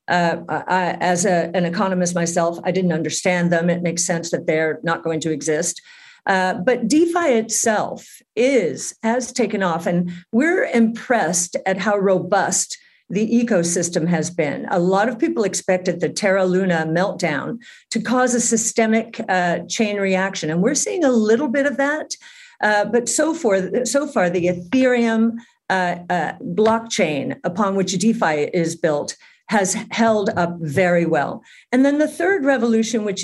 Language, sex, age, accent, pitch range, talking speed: English, female, 50-69, American, 175-240 Hz, 160 wpm